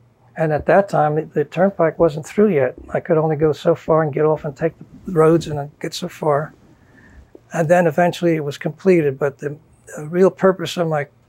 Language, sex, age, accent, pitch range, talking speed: English, male, 60-79, American, 140-170 Hz, 215 wpm